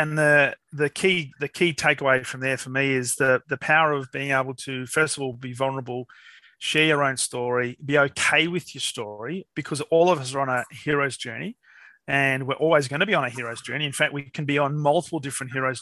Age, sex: 30-49, male